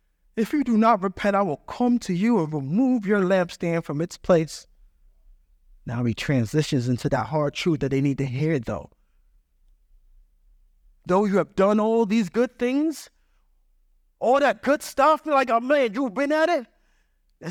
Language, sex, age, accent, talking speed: English, male, 20-39, American, 170 wpm